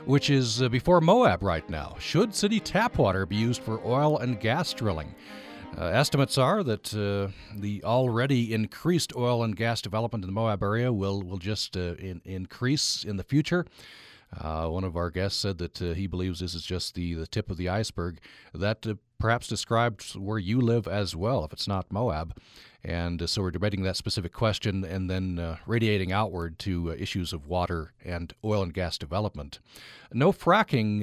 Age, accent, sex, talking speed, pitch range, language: 50-69, American, male, 190 wpm, 90-115 Hz, English